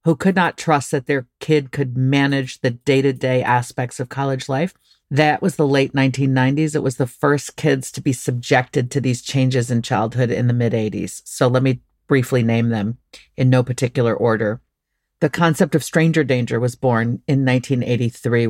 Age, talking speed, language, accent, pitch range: 40-59, 180 wpm, English, American, 125-160 Hz